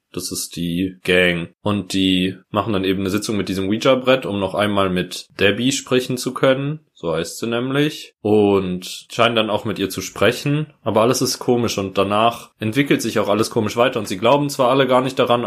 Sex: male